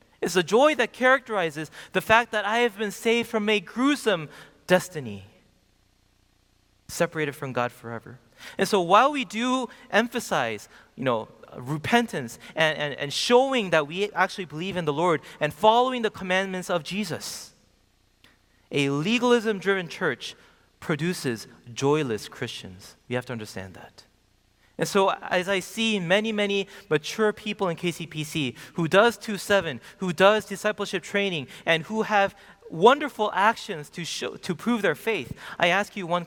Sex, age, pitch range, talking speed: male, 30-49, 130-210 Hz, 145 wpm